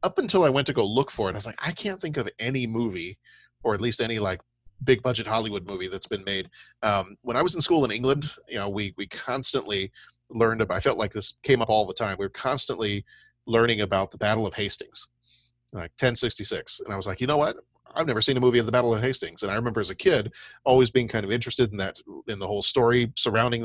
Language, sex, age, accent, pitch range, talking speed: English, male, 40-59, American, 100-125 Hz, 255 wpm